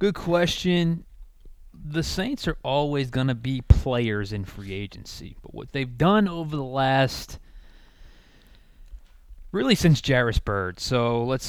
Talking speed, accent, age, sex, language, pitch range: 135 wpm, American, 20-39, male, English, 105-130 Hz